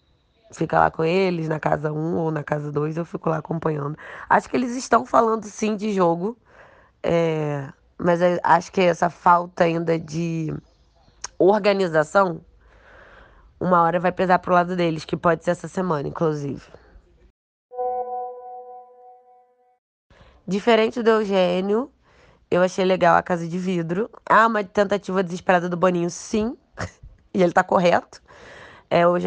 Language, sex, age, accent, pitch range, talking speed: Portuguese, female, 20-39, Brazilian, 170-205 Hz, 140 wpm